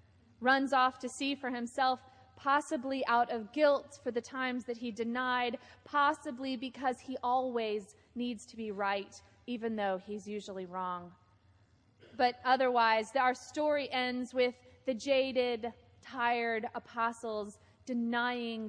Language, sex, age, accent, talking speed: English, female, 30-49, American, 130 wpm